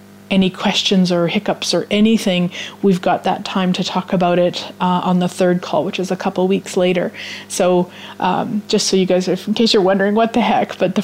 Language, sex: English, female